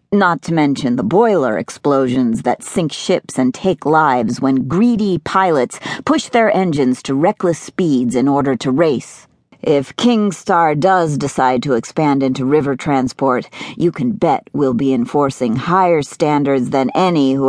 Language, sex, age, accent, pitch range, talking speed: English, female, 50-69, American, 130-180 Hz, 160 wpm